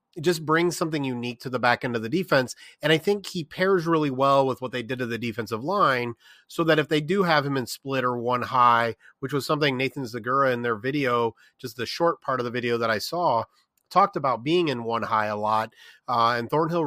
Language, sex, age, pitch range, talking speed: English, male, 30-49, 120-145 Hz, 240 wpm